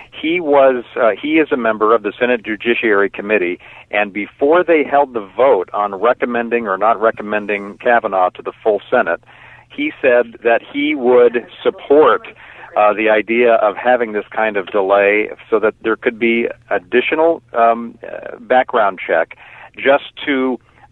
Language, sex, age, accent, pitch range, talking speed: English, male, 50-69, American, 110-140 Hz, 160 wpm